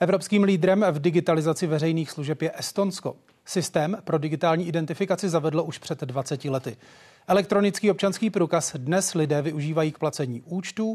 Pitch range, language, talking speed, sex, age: 145-185 Hz, Czech, 140 wpm, male, 30-49